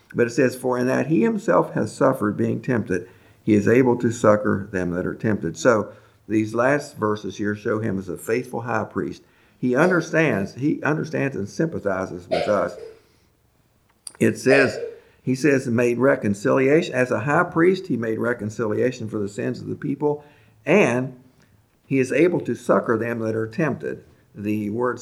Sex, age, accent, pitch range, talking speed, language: male, 50-69, American, 105-135 Hz, 170 wpm, English